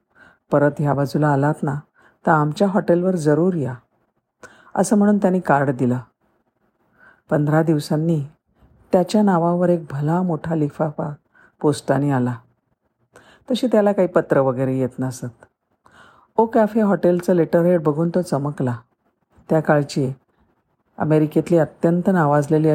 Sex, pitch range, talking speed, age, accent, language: female, 140-180 Hz, 115 wpm, 50-69, native, Marathi